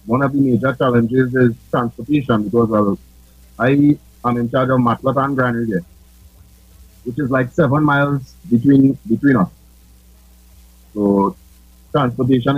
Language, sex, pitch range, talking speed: English, male, 85-125 Hz, 130 wpm